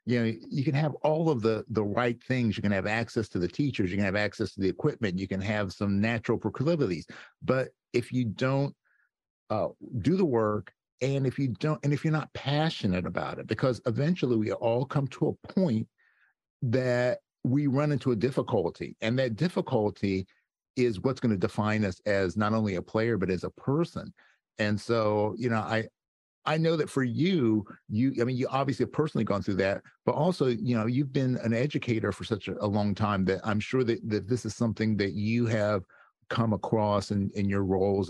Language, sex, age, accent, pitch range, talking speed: English, male, 50-69, American, 105-135 Hz, 210 wpm